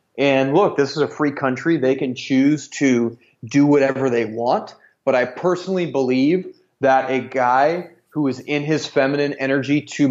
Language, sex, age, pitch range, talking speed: English, male, 30-49, 130-155 Hz, 170 wpm